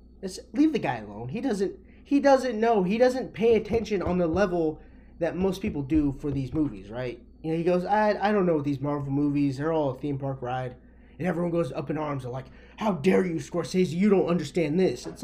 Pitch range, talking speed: 145-190 Hz, 230 wpm